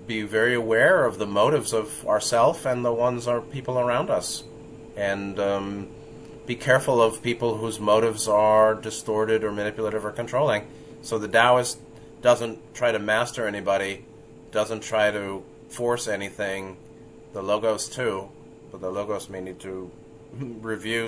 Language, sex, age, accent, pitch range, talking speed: English, male, 30-49, American, 100-120 Hz, 150 wpm